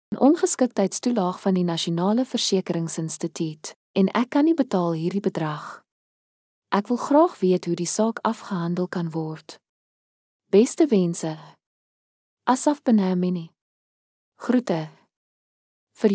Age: 20-39